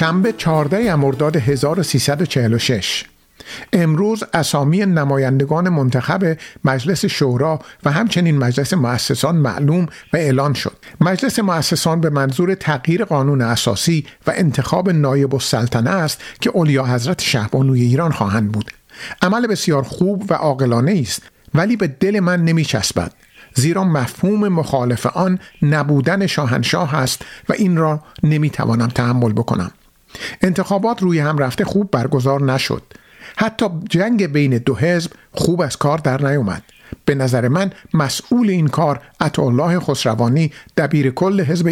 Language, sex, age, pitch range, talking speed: Persian, male, 50-69, 135-180 Hz, 130 wpm